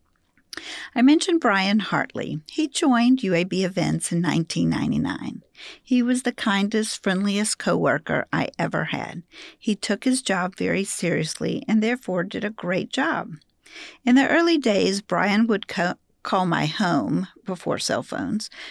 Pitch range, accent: 170-240 Hz, American